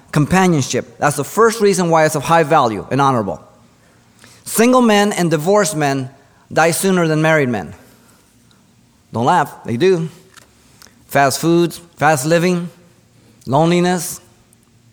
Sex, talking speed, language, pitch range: male, 125 wpm, English, 115-165 Hz